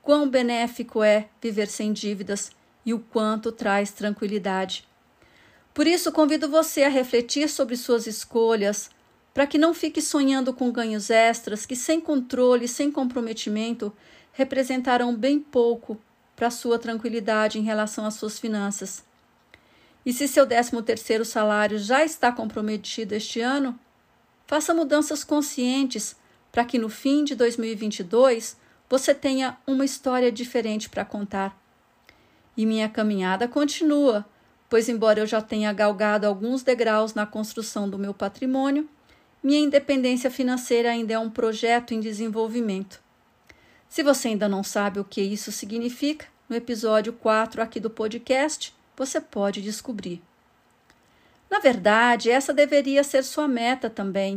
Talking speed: 135 wpm